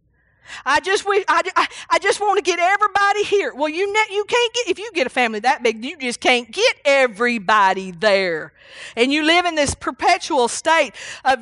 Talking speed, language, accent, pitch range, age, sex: 180 wpm, English, American, 240-350 Hz, 40-59, female